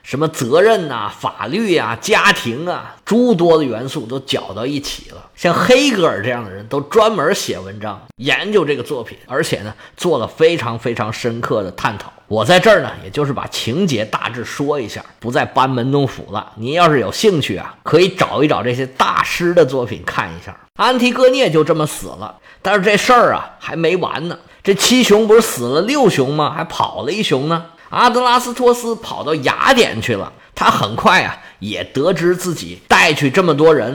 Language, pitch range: Chinese, 130-215 Hz